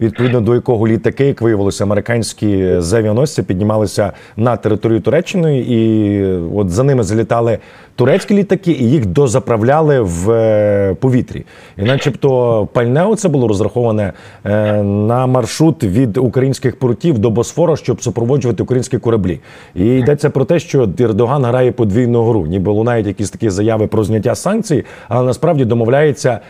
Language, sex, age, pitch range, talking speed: Ukrainian, male, 30-49, 110-140 Hz, 140 wpm